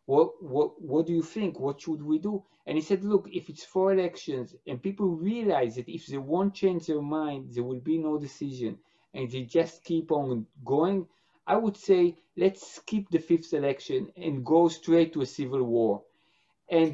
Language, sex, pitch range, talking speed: Slovak, male, 140-190 Hz, 195 wpm